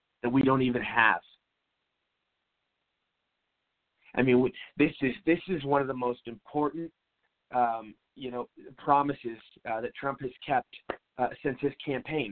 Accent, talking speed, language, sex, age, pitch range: American, 135 wpm, English, male, 30-49, 125-155 Hz